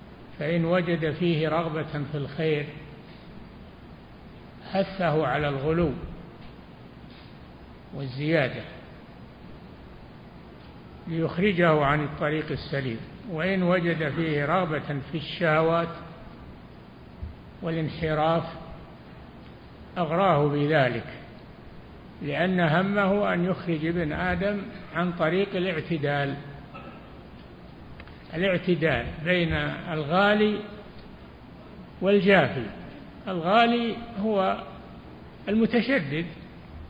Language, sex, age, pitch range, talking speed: Arabic, male, 60-79, 140-185 Hz, 65 wpm